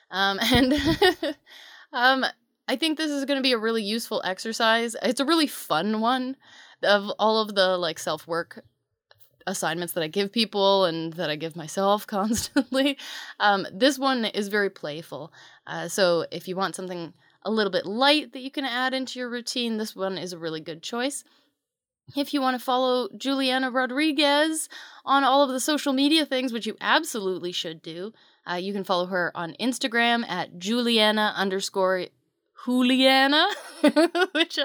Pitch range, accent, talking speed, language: 180-260 Hz, American, 170 wpm, English